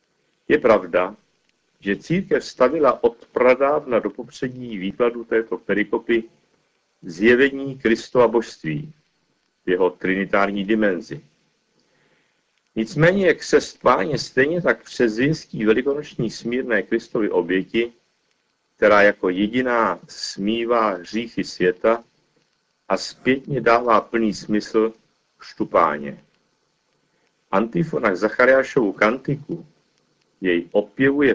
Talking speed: 90 wpm